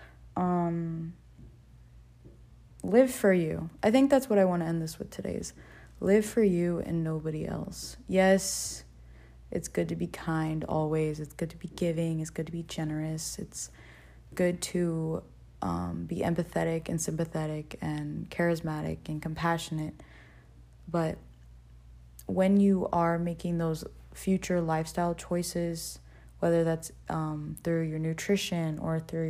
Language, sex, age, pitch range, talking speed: English, female, 20-39, 150-175 Hz, 135 wpm